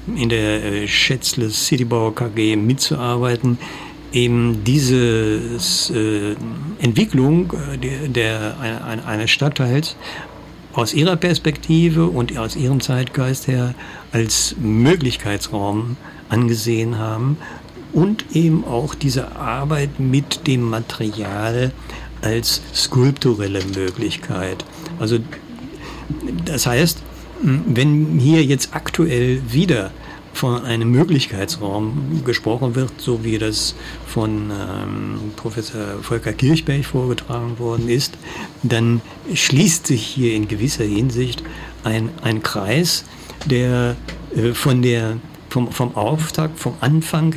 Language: German